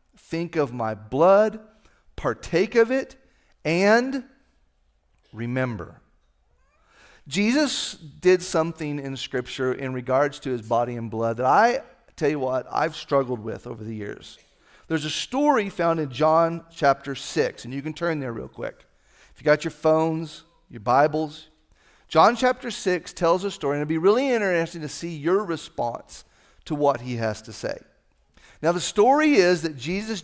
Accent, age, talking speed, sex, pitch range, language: American, 40-59, 165 wpm, male, 140-195 Hz, English